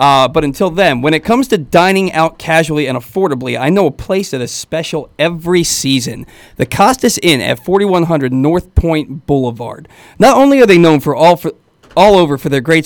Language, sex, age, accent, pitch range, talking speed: English, male, 40-59, American, 140-190 Hz, 200 wpm